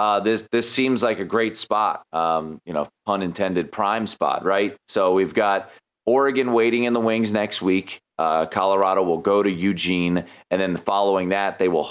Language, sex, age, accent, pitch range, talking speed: English, male, 30-49, American, 100-125 Hz, 190 wpm